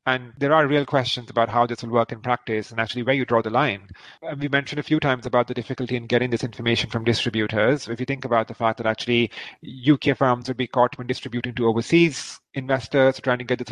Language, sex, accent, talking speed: English, male, Indian, 240 wpm